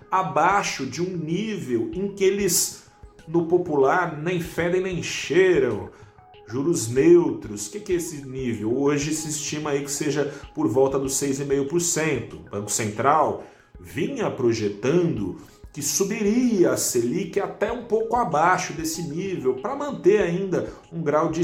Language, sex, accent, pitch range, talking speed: Portuguese, male, Brazilian, 115-175 Hz, 145 wpm